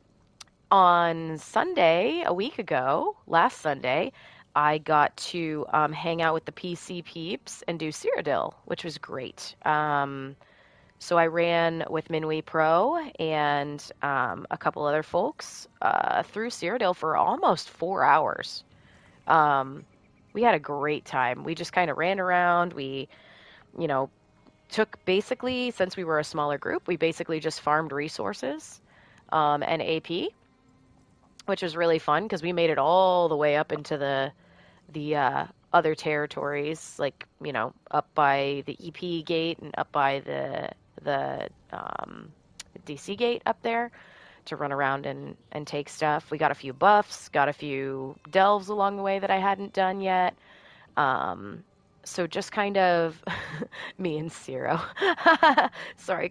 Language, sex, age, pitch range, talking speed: English, female, 20-39, 150-185 Hz, 150 wpm